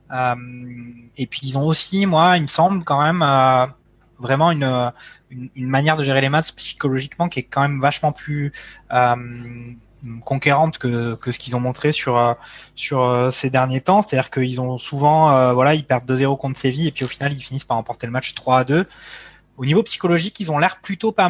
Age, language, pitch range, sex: 20-39, French, 125-155 Hz, male